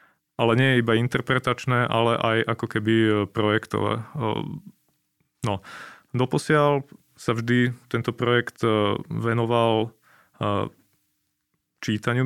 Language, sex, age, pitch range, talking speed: Slovak, male, 20-39, 110-125 Hz, 85 wpm